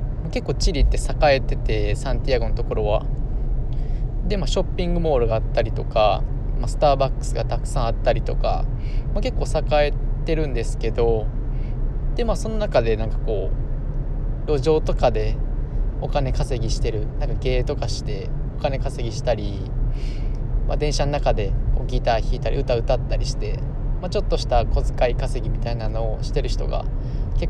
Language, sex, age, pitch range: Japanese, male, 20-39, 115-135 Hz